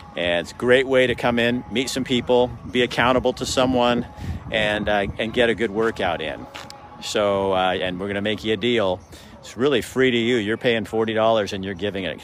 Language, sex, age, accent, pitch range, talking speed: English, male, 50-69, American, 105-125 Hz, 220 wpm